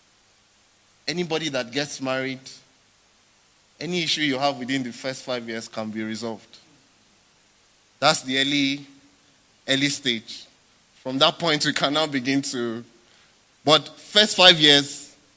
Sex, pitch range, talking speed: male, 120-150 Hz, 125 wpm